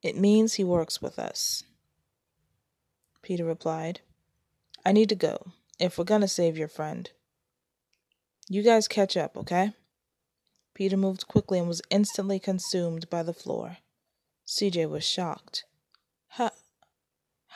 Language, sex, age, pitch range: English, female, 20-39, 175-210 Hz